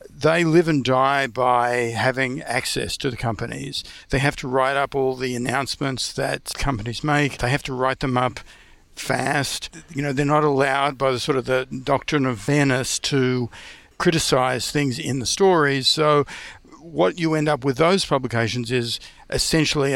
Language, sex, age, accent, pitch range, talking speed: English, male, 50-69, Australian, 125-145 Hz, 170 wpm